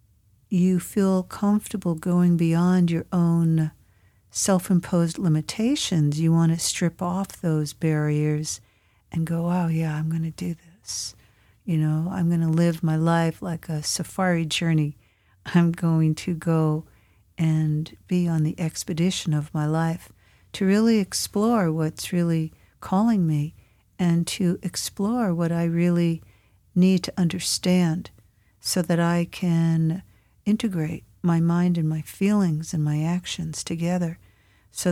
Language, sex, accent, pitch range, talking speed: English, female, American, 150-180 Hz, 135 wpm